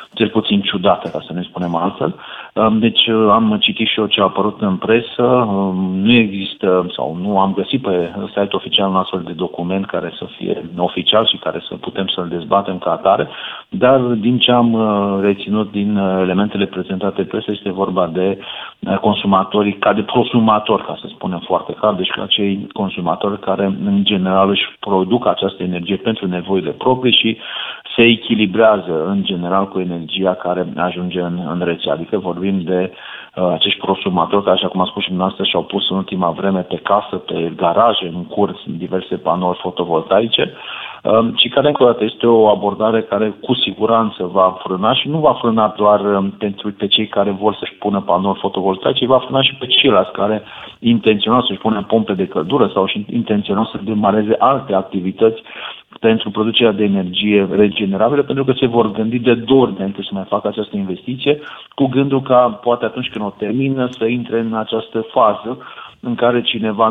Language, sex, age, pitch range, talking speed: Romanian, male, 40-59, 95-115 Hz, 180 wpm